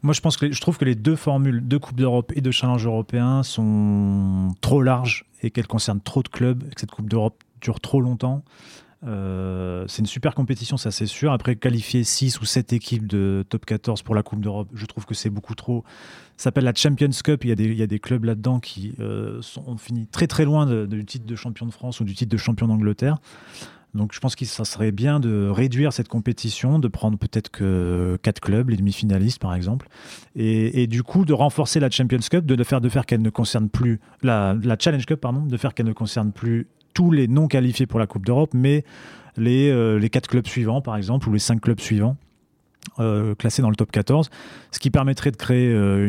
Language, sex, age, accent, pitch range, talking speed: French, male, 30-49, French, 110-135 Hz, 235 wpm